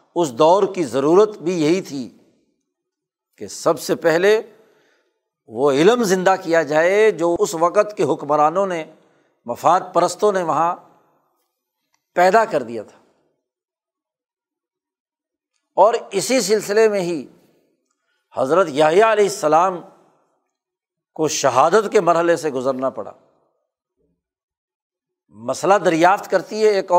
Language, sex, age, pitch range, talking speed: Urdu, male, 60-79, 155-215 Hz, 115 wpm